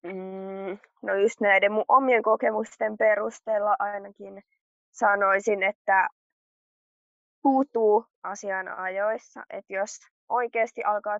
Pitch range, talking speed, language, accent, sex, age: 190-215 Hz, 95 wpm, Finnish, native, female, 20-39